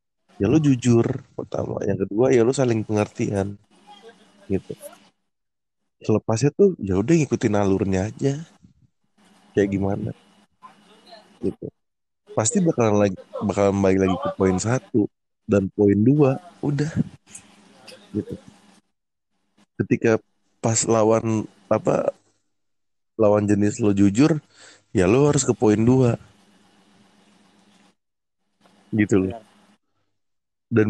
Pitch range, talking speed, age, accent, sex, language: 100-135 Hz, 100 wpm, 30-49, native, male, Indonesian